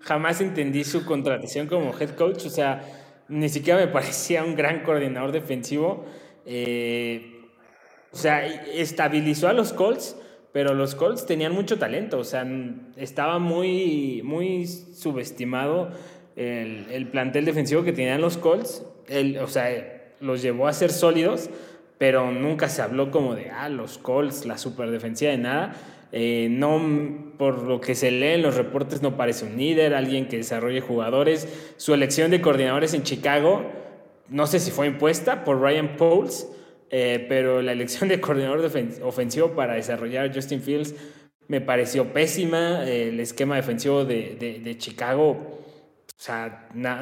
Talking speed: 155 wpm